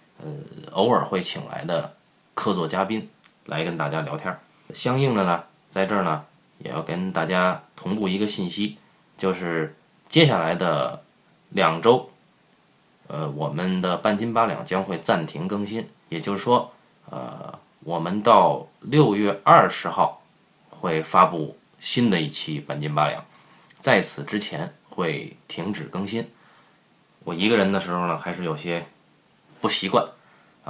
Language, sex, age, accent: Chinese, male, 20-39, native